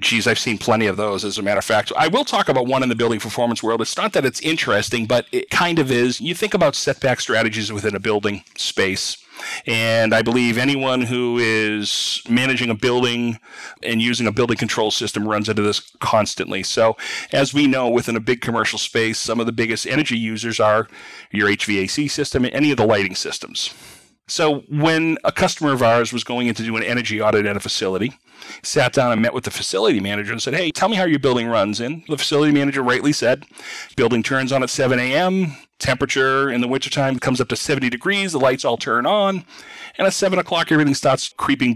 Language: English